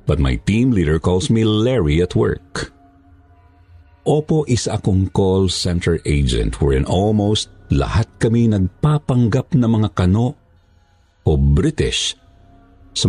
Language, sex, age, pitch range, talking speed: Filipino, male, 50-69, 85-110 Hz, 120 wpm